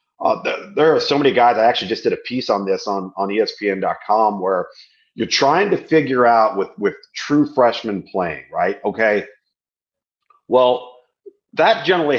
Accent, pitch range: American, 115-185 Hz